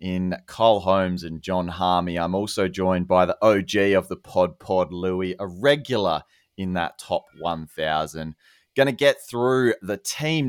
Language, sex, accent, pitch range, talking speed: English, male, Australian, 90-110 Hz, 165 wpm